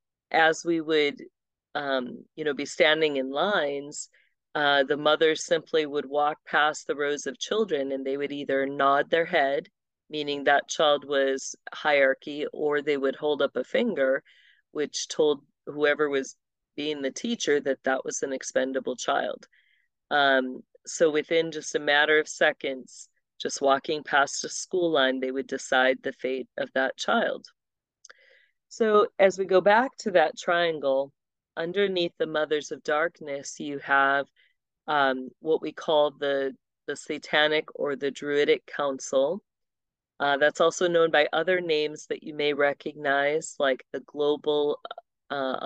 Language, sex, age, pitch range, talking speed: English, female, 40-59, 140-165 Hz, 150 wpm